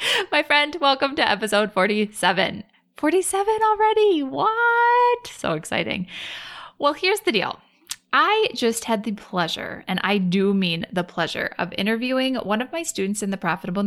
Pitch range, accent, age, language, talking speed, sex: 185-255 Hz, American, 20-39, English, 150 wpm, female